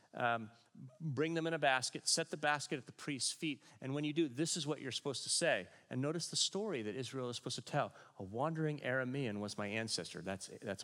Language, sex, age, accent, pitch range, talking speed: English, male, 40-59, American, 110-150 Hz, 235 wpm